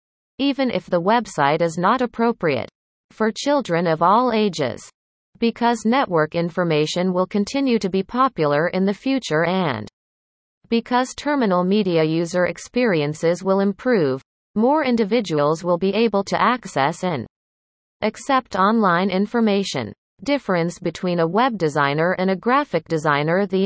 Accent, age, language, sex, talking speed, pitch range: American, 40-59, English, female, 130 wpm, 165-230 Hz